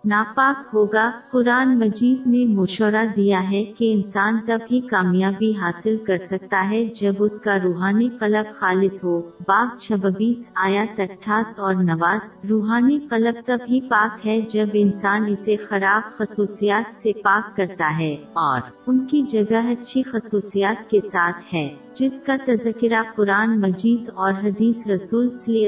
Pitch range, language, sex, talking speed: 195-230 Hz, Urdu, female, 140 wpm